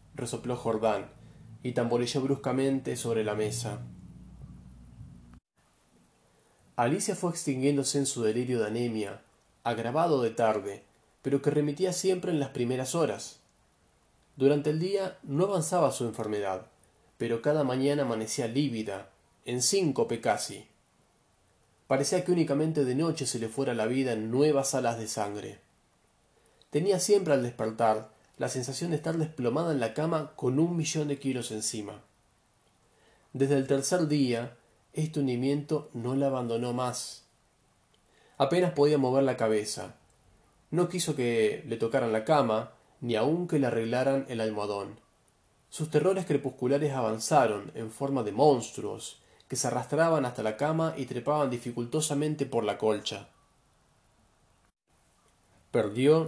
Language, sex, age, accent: Spanish, male, 30-49, Argentinian